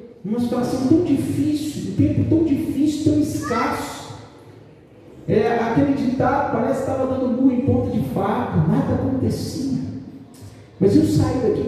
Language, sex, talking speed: Portuguese, male, 140 wpm